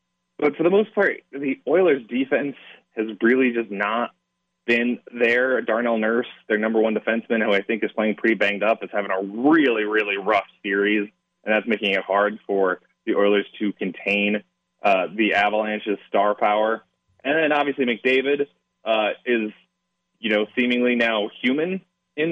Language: English